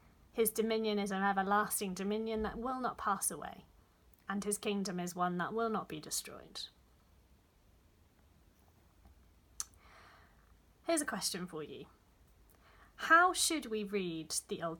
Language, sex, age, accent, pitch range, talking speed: English, female, 30-49, British, 195-255 Hz, 130 wpm